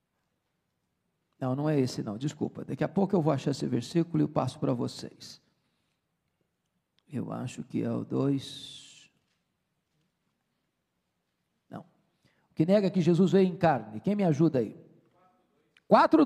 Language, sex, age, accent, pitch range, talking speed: Portuguese, male, 50-69, Brazilian, 195-290 Hz, 150 wpm